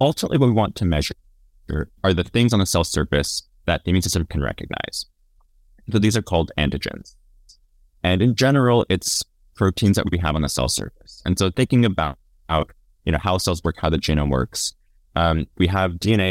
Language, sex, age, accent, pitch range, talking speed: English, male, 20-39, American, 75-95 Hz, 190 wpm